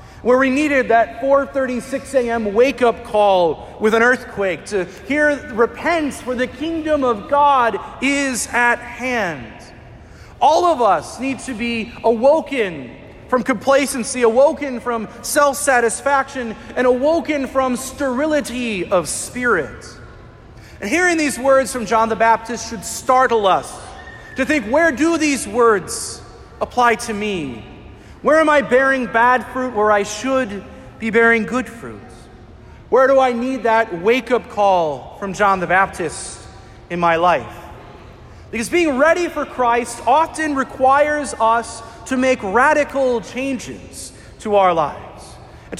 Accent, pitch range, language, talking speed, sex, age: American, 215-275 Hz, English, 135 wpm, male, 40-59